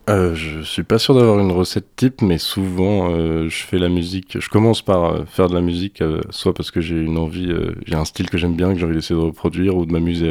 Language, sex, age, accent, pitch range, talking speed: French, male, 20-39, French, 80-95 Hz, 270 wpm